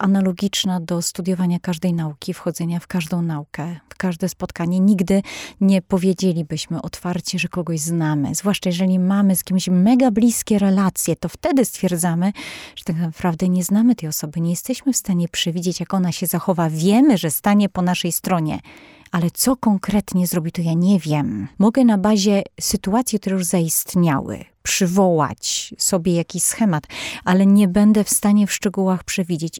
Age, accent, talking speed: 30-49, native, 160 wpm